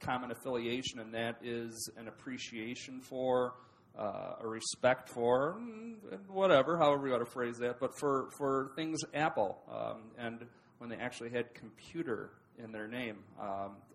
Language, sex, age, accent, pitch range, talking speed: English, male, 40-59, American, 115-135 Hz, 150 wpm